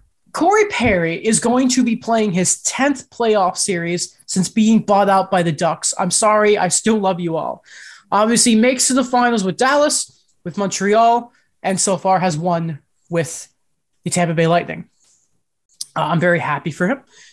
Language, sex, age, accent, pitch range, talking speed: English, male, 20-39, American, 180-240 Hz, 175 wpm